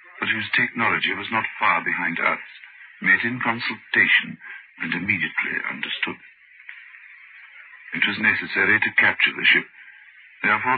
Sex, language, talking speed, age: male, English, 120 wpm, 60-79